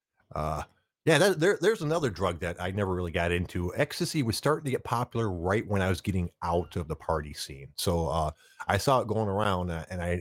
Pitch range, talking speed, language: 80-105 Hz, 225 wpm, English